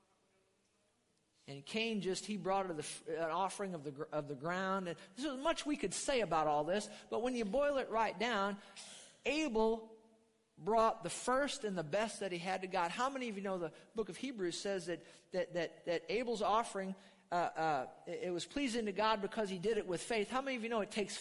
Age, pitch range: 50-69, 170-220 Hz